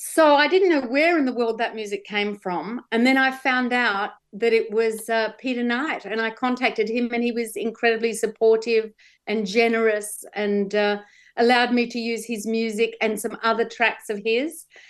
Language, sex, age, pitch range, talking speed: English, female, 50-69, 215-245 Hz, 195 wpm